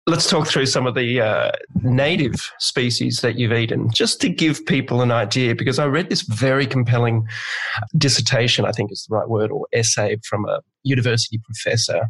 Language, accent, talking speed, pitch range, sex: English, Australian, 185 wpm, 115-130 Hz, male